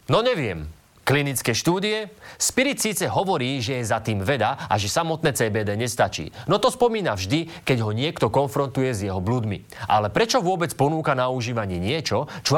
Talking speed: 170 wpm